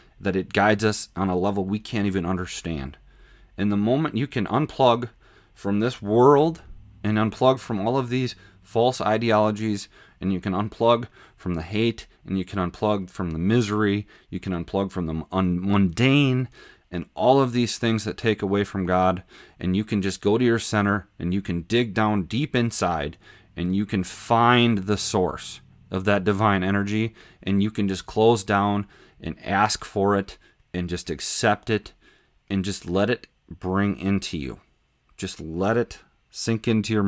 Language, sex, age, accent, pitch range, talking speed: English, male, 30-49, American, 95-110 Hz, 180 wpm